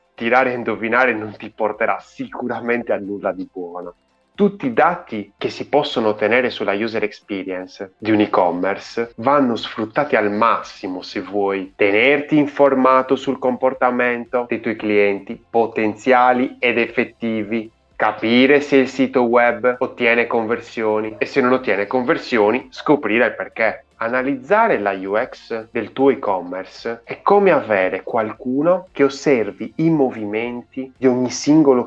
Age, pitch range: 30-49, 105-130 Hz